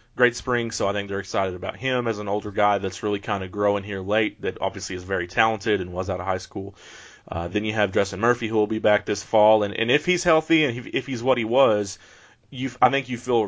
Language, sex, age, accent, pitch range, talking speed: English, male, 30-49, American, 100-115 Hz, 265 wpm